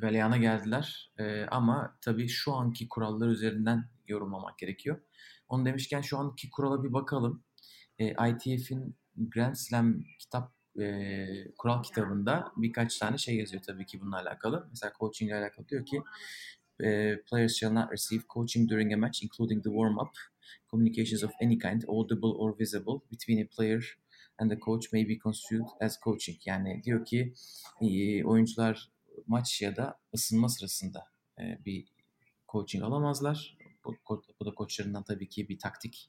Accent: native